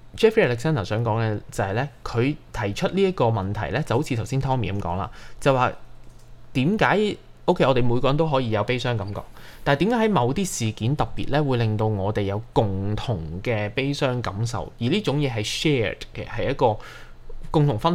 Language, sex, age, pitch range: Chinese, male, 20-39, 110-145 Hz